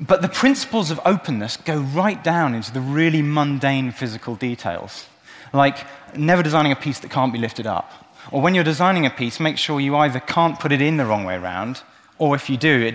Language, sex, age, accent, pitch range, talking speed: English, male, 30-49, British, 120-165 Hz, 220 wpm